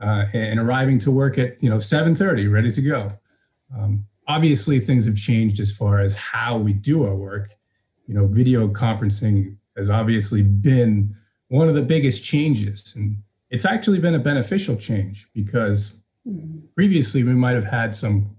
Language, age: English, 30-49